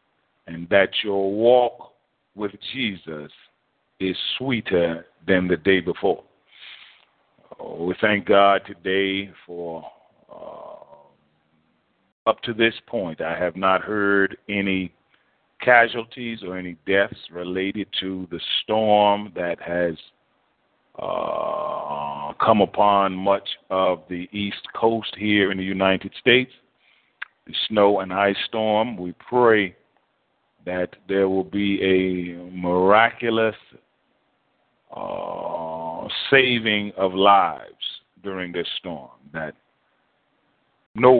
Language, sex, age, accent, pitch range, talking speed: English, male, 50-69, American, 90-105 Hz, 105 wpm